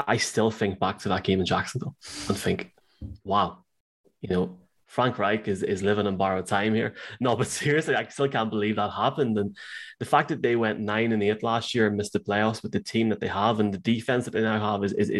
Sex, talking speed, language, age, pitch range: male, 245 wpm, English, 20-39, 100-115 Hz